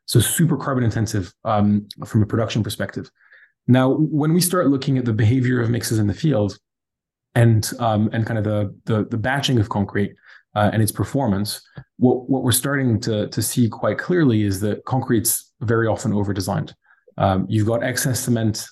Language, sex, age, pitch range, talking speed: English, male, 20-39, 105-125 Hz, 185 wpm